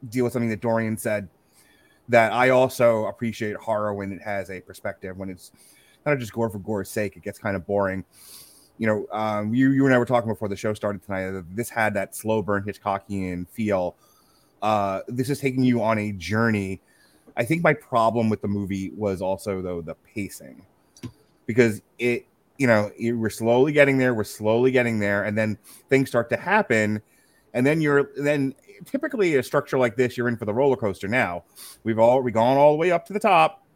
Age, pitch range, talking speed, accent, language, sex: 30-49, 100-125 Hz, 205 wpm, American, English, male